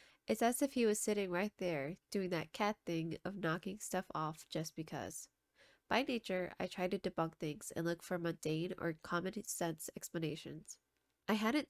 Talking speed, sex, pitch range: 180 wpm, female, 170-205 Hz